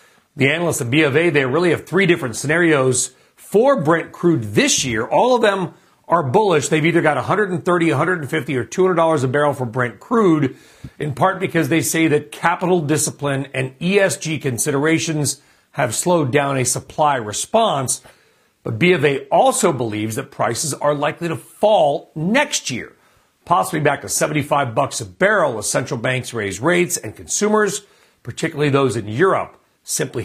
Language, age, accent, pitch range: English, 40-59, American, 130-170 Hz